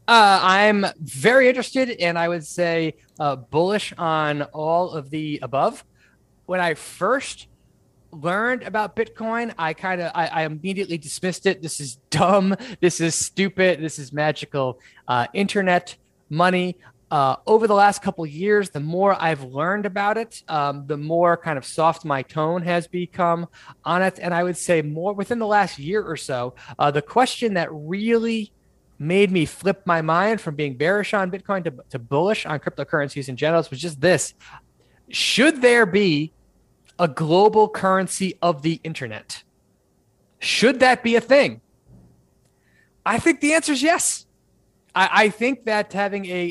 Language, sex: English, male